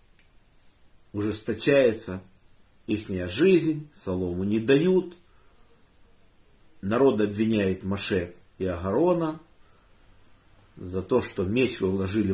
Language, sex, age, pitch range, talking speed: Russian, male, 50-69, 95-130 Hz, 85 wpm